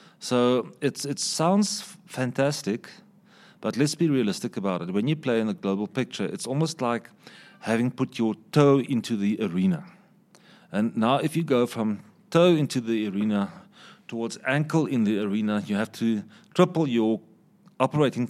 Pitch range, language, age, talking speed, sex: 115-190 Hz, English, 40-59, 155 wpm, male